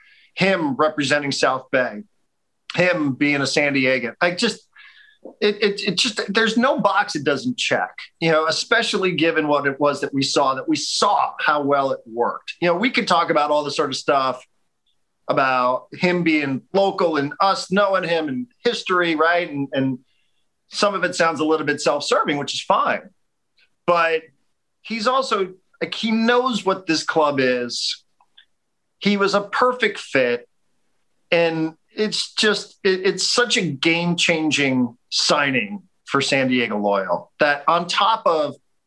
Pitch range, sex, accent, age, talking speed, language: 145-205 Hz, male, American, 40-59, 165 wpm, English